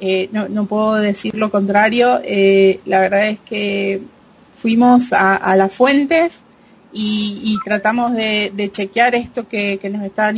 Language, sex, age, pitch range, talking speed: English, female, 30-49, 200-235 Hz, 160 wpm